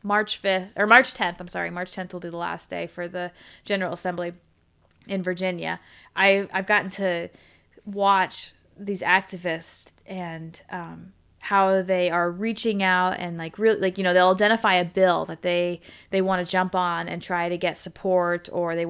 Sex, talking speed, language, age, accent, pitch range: female, 185 wpm, English, 20-39, American, 175-200 Hz